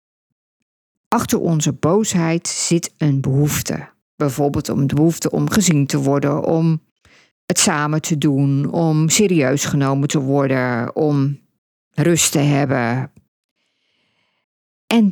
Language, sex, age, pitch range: Dutch, female, 50-69, 145-215 Hz